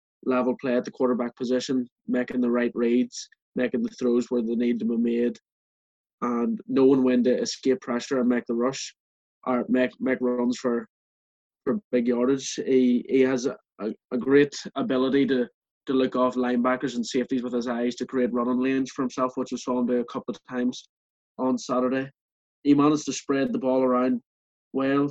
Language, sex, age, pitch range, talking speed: English, male, 20-39, 125-135 Hz, 190 wpm